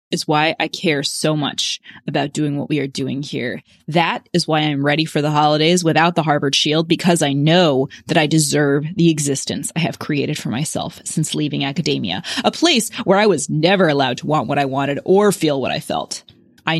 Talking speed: 210 wpm